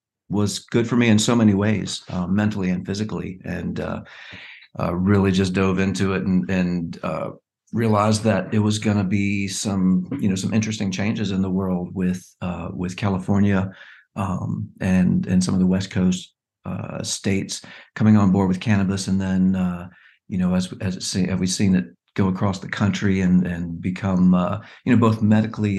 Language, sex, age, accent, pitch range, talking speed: English, male, 50-69, American, 90-105 Hz, 190 wpm